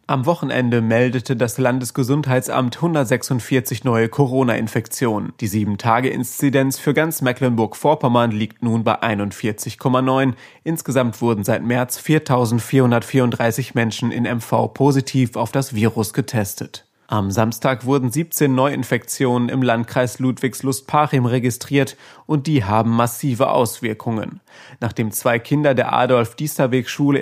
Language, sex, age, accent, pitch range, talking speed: German, male, 30-49, German, 115-135 Hz, 110 wpm